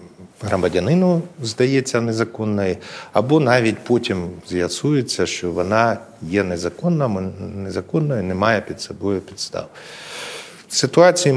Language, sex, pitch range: Ukrainian, male, 95-130 Hz